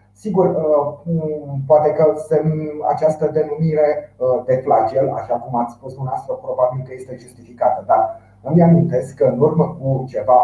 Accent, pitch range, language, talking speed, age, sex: native, 125-155 Hz, Romanian, 130 wpm, 30-49, male